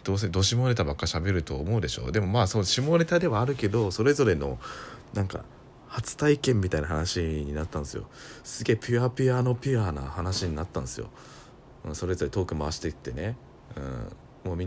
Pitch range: 80-115 Hz